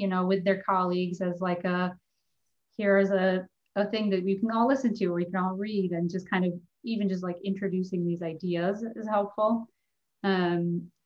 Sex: female